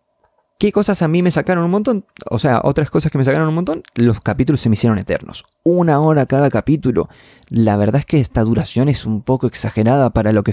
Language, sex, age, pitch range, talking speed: Spanish, male, 20-39, 110-160 Hz, 230 wpm